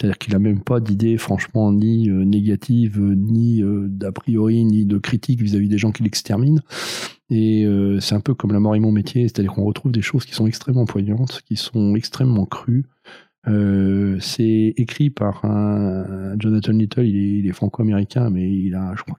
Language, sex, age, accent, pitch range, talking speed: French, male, 40-59, French, 100-115 Hz, 195 wpm